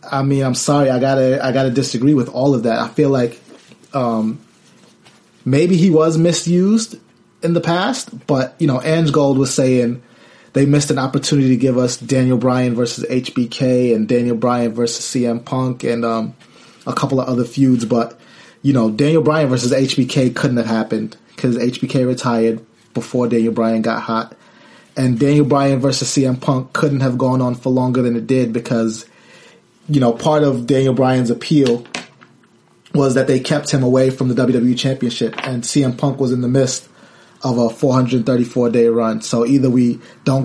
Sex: male